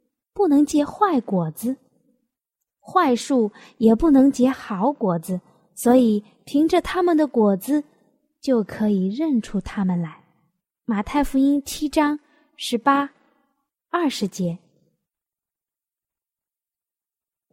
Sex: female